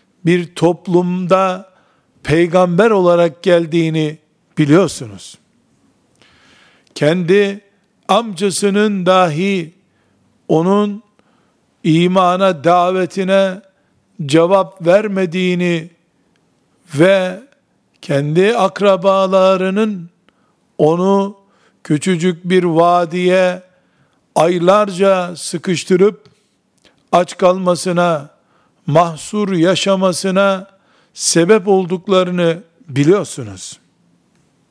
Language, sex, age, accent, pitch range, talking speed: Turkish, male, 50-69, native, 170-200 Hz, 50 wpm